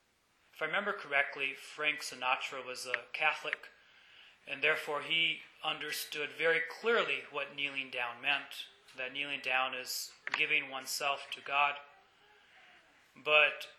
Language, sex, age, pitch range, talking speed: English, male, 30-49, 130-155 Hz, 120 wpm